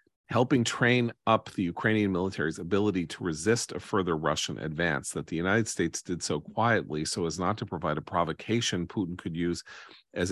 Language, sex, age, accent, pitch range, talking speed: English, male, 40-59, American, 80-105 Hz, 180 wpm